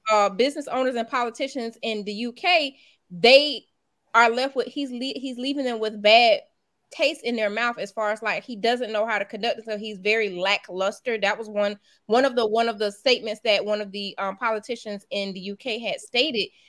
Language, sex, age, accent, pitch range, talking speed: English, female, 20-39, American, 210-255 Hz, 210 wpm